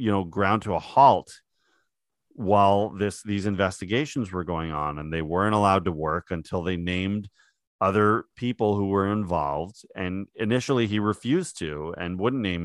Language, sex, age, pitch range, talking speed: English, male, 40-59, 90-110 Hz, 165 wpm